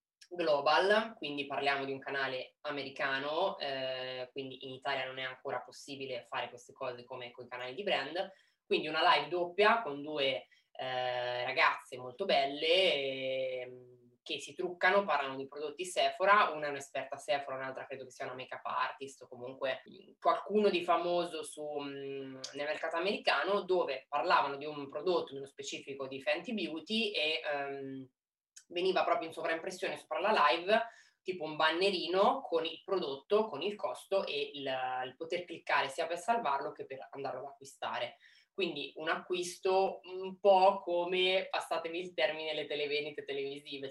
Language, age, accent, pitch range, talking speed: Italian, 20-39, native, 135-185 Hz, 155 wpm